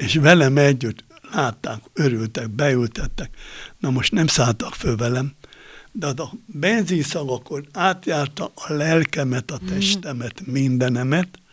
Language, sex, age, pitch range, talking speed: Hungarian, male, 60-79, 120-165 Hz, 115 wpm